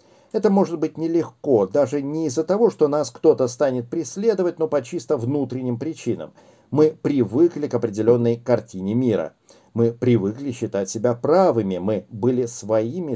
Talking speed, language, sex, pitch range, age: 145 wpm, Russian, male, 115-150 Hz, 50-69